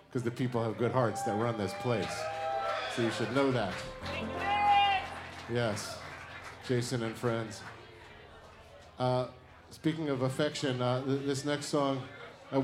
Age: 40-59